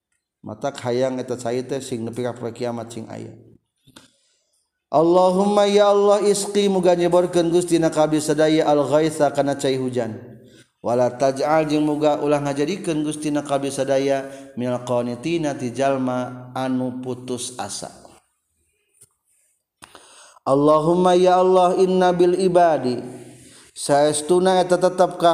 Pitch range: 130-175 Hz